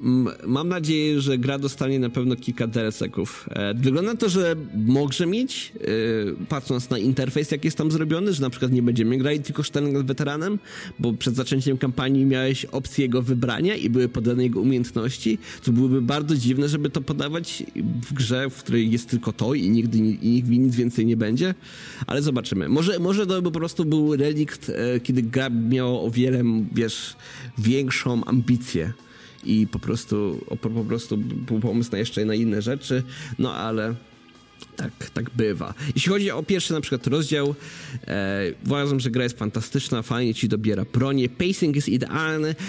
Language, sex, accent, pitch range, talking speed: Polish, male, native, 115-145 Hz, 170 wpm